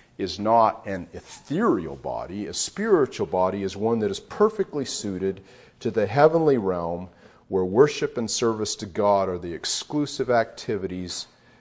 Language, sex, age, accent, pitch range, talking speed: English, male, 50-69, American, 95-120 Hz, 145 wpm